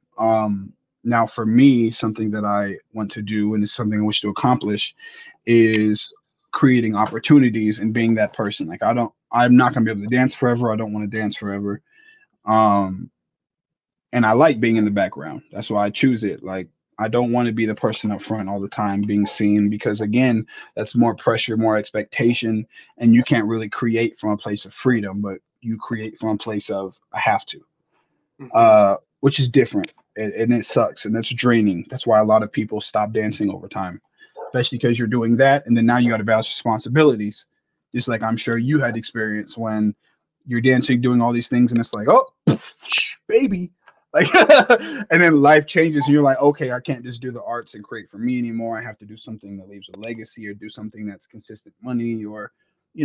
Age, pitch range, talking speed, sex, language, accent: 20-39, 105-125 Hz, 210 wpm, male, English, American